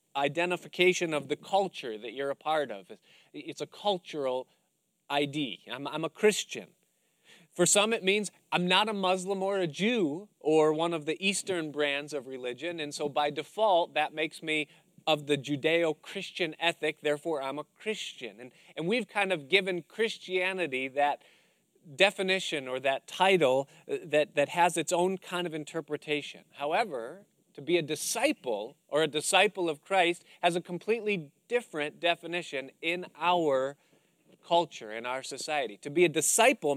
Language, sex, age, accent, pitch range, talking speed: English, male, 40-59, American, 150-185 Hz, 155 wpm